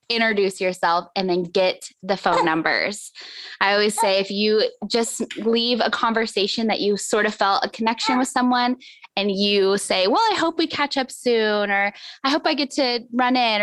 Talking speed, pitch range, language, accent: 195 wpm, 185-235 Hz, English, American